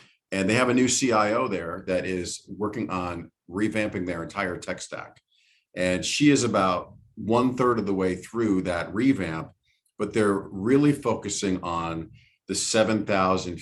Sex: male